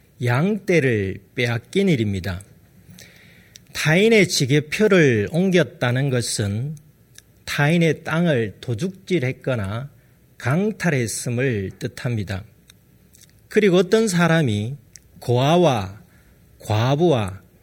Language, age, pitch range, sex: Korean, 40-59, 115-170 Hz, male